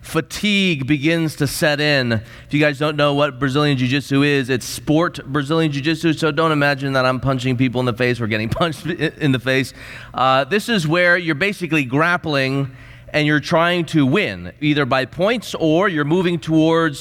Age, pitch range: 30-49, 125-175 Hz